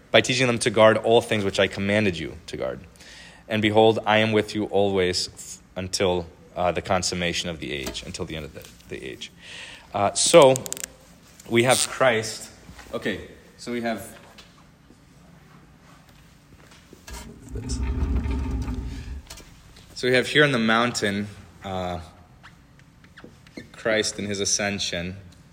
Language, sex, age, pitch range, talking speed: English, male, 30-49, 90-120 Hz, 130 wpm